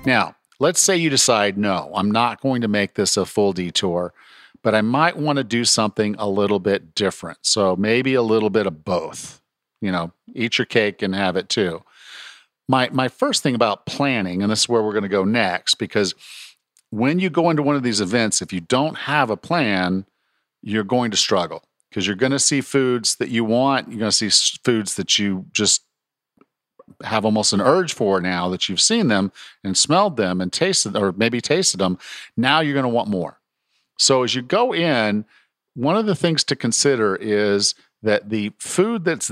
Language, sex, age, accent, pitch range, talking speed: English, male, 50-69, American, 100-135 Hz, 205 wpm